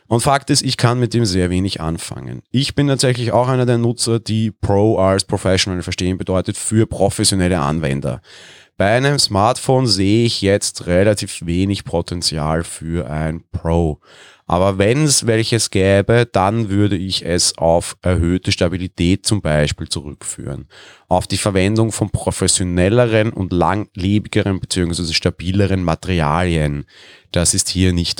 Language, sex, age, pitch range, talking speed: German, male, 30-49, 85-110 Hz, 145 wpm